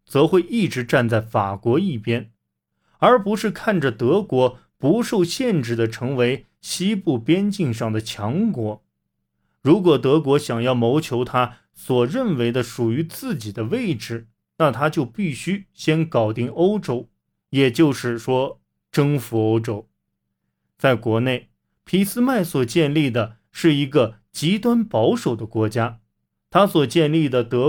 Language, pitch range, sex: Chinese, 115-165 Hz, male